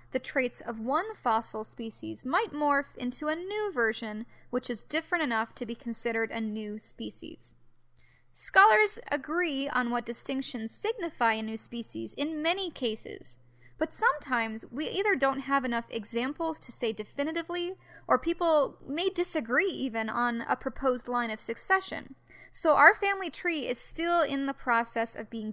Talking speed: 155 wpm